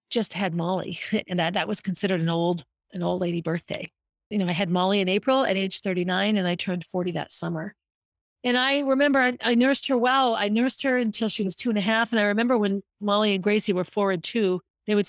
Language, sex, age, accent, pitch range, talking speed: English, female, 40-59, American, 180-235 Hz, 245 wpm